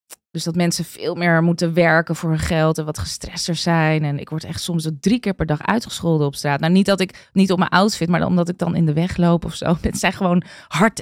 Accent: Dutch